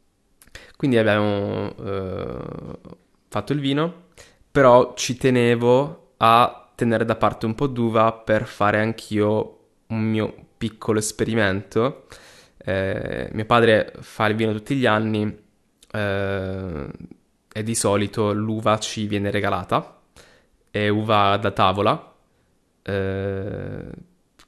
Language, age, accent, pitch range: Italian, 20-39, native, 95-110 Hz